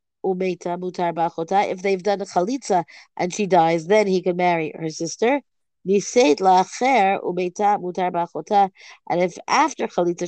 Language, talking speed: English, 105 wpm